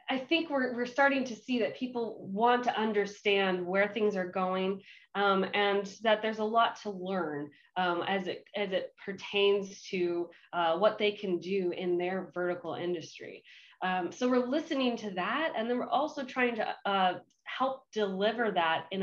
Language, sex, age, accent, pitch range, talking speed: English, female, 20-39, American, 185-240 Hz, 180 wpm